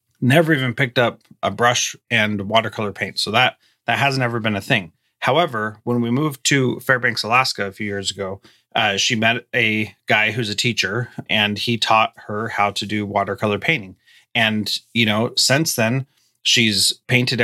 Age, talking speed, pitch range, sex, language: 30-49, 180 wpm, 110-135 Hz, male, English